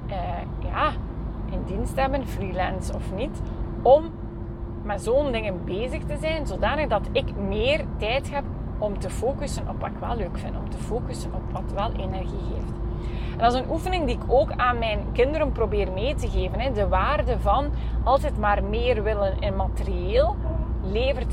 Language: Dutch